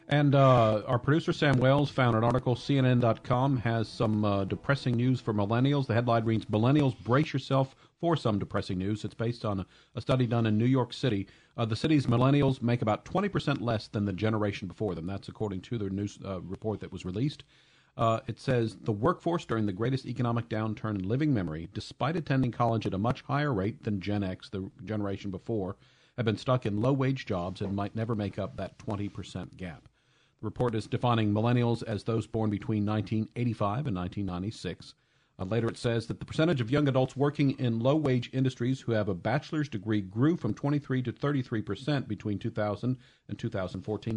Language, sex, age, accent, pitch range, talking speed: English, male, 40-59, American, 105-130 Hz, 195 wpm